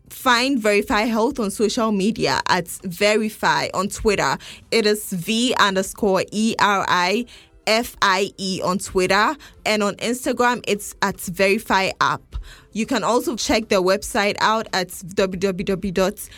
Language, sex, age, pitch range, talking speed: English, female, 10-29, 185-225 Hz, 120 wpm